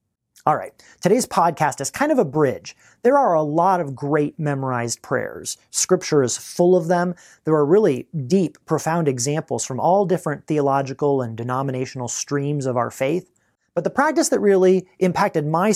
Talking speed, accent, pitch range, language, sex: 170 wpm, American, 145-190 Hz, English, male